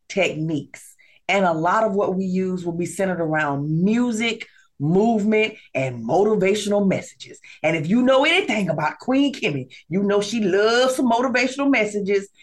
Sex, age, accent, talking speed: female, 30-49, American, 155 wpm